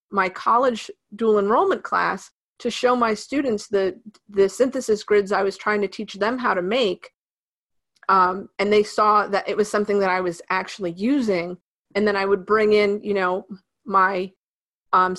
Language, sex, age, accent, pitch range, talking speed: English, female, 30-49, American, 190-220 Hz, 180 wpm